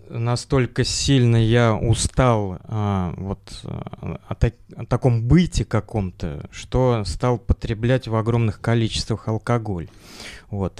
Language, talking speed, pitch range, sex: Russian, 90 wpm, 105-125 Hz, male